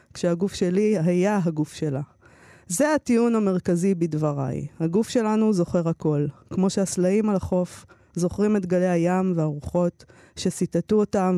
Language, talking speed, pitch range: Hebrew, 125 wpm, 165-205 Hz